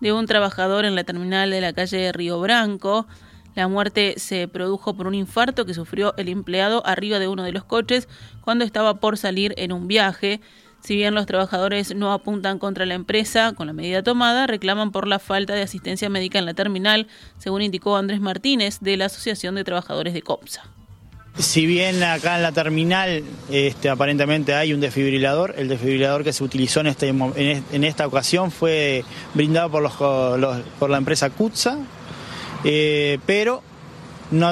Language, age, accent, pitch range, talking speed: Spanish, 20-39, Argentinian, 140-195 Hz, 175 wpm